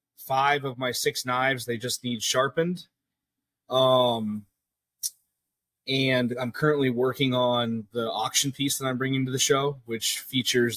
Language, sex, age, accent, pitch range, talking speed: English, male, 20-39, American, 120-140 Hz, 145 wpm